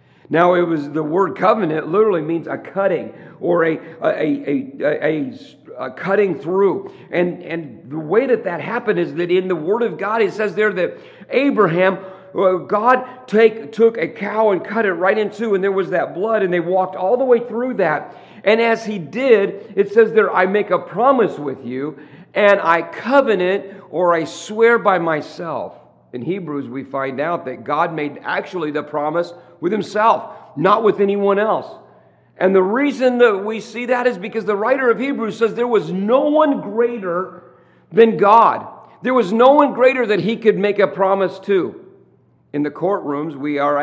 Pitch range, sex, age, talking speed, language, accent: 175-230 Hz, male, 50-69, 190 wpm, English, American